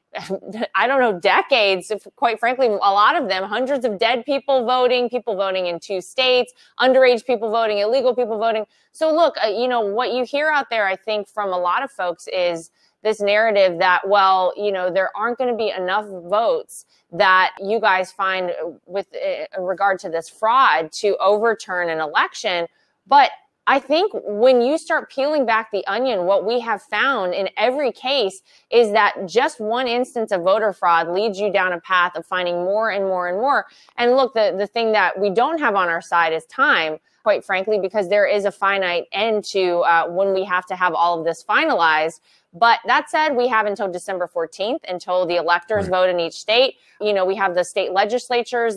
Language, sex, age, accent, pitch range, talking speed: English, female, 20-39, American, 185-240 Hz, 200 wpm